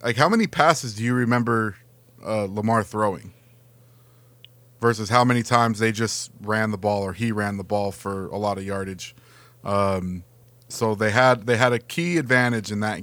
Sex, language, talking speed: male, English, 185 wpm